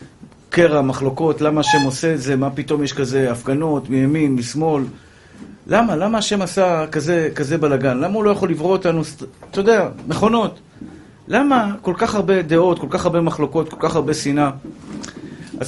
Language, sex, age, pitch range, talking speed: Hebrew, male, 50-69, 135-180 Hz, 170 wpm